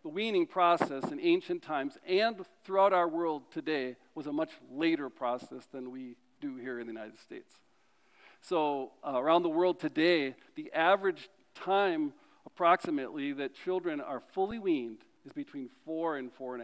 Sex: male